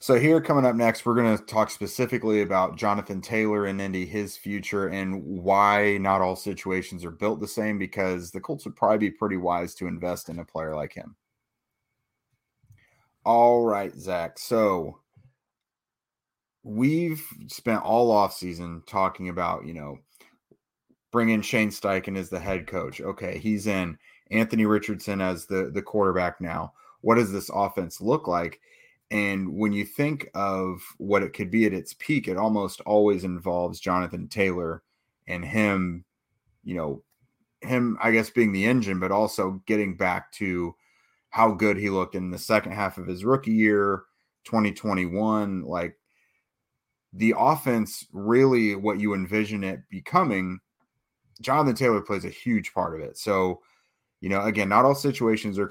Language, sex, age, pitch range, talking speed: English, male, 30-49, 95-110 Hz, 160 wpm